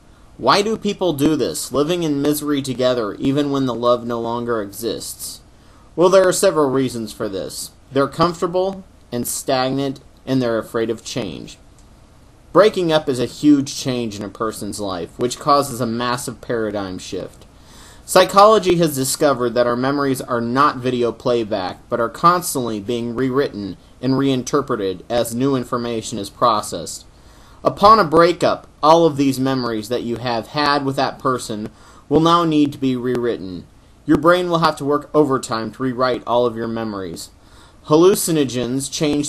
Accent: American